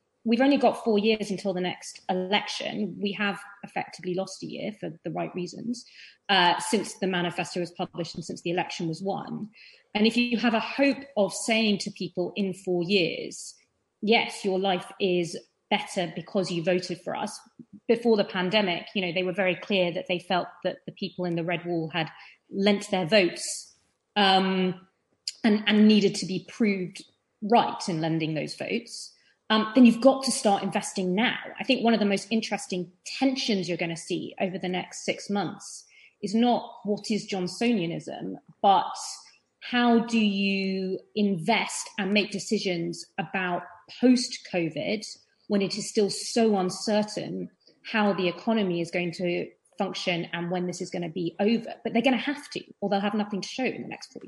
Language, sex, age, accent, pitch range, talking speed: English, female, 30-49, British, 180-220 Hz, 185 wpm